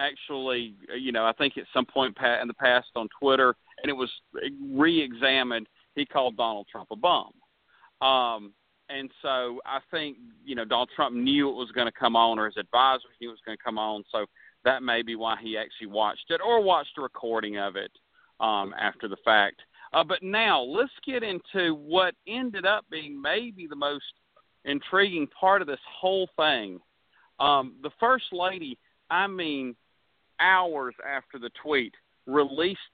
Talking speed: 180 wpm